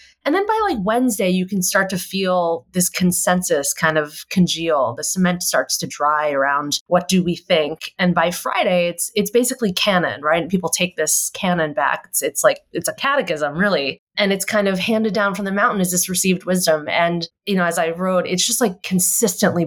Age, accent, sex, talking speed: 30-49, American, female, 210 wpm